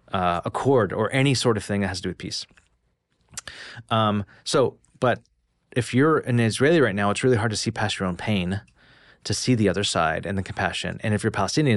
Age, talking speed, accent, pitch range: 30-49, 220 wpm, American, 95-115 Hz